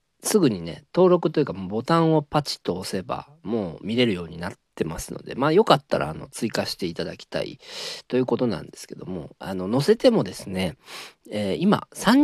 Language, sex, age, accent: Japanese, male, 40-59, native